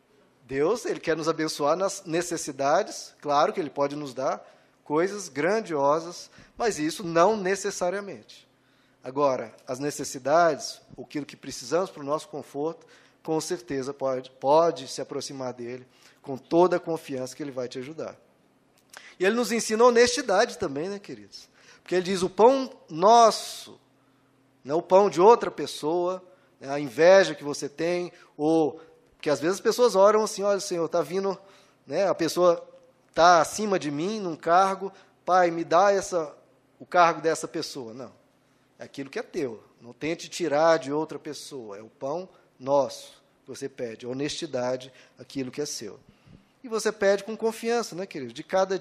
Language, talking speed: Portuguese, 165 wpm